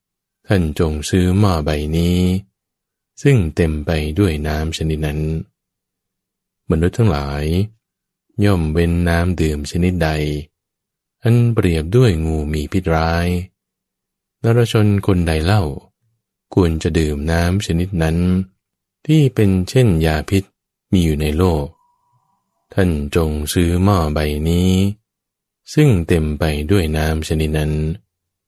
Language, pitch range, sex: English, 80-100 Hz, male